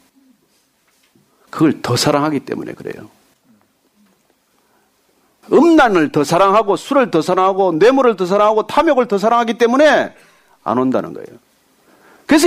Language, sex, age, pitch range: Korean, male, 40-59, 195-280 Hz